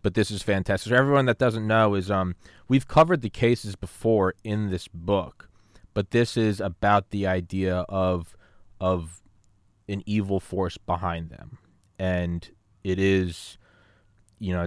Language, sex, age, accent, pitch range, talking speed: English, male, 20-39, American, 90-105 Hz, 150 wpm